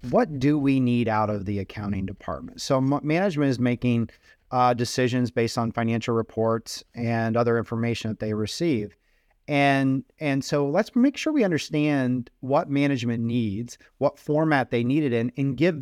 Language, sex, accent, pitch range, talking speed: English, male, American, 120-150 Hz, 165 wpm